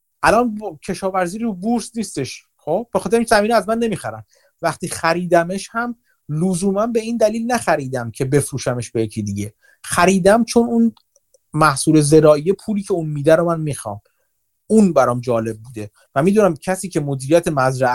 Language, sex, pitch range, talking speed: Persian, male, 135-205 Hz, 160 wpm